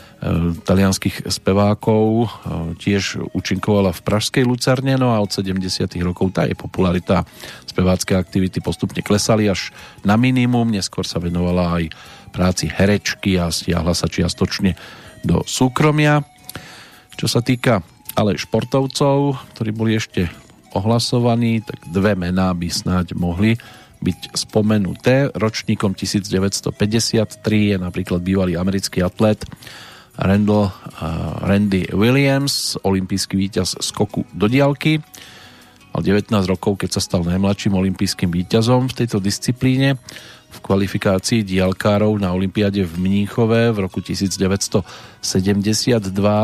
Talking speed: 115 wpm